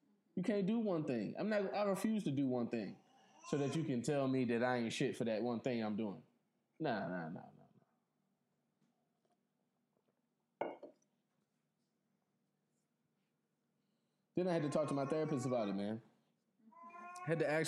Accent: American